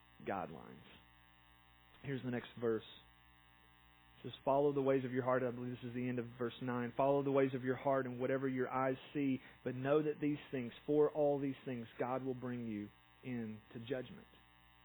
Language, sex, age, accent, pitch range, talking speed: English, male, 40-59, American, 120-155 Hz, 195 wpm